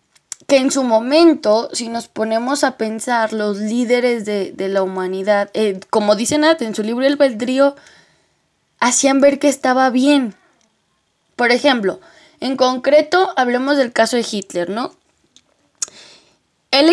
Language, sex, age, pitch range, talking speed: English, female, 20-39, 225-295 Hz, 145 wpm